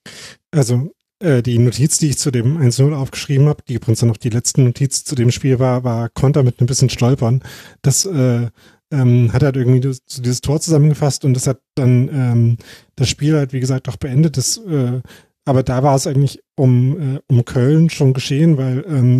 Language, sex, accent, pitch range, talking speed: German, male, German, 125-145 Hz, 200 wpm